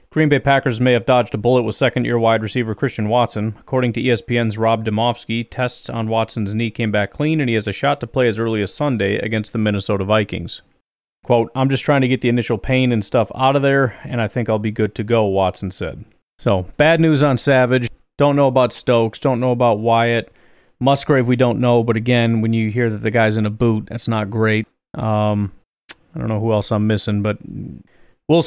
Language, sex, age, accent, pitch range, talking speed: English, male, 40-59, American, 110-130 Hz, 220 wpm